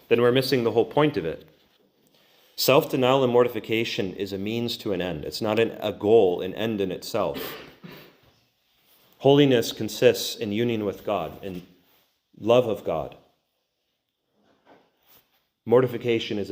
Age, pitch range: 30-49, 95-115 Hz